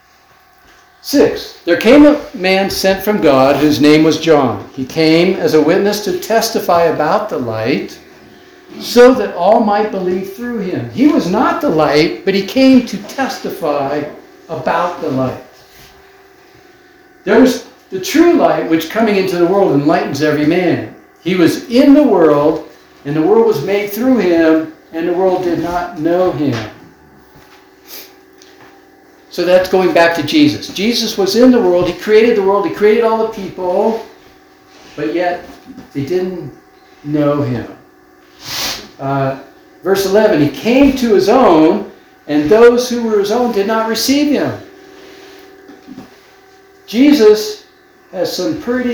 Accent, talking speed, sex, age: American, 150 wpm, male, 60-79